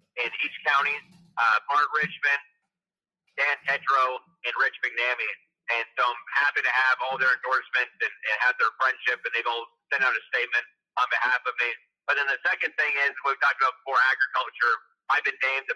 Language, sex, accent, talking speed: English, male, American, 195 wpm